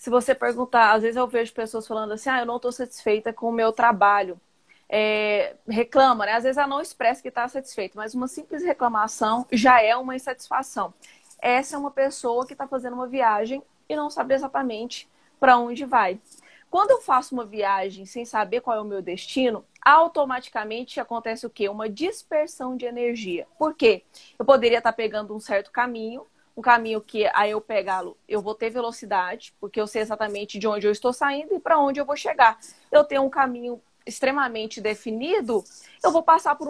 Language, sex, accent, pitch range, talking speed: Portuguese, female, Brazilian, 215-270 Hz, 190 wpm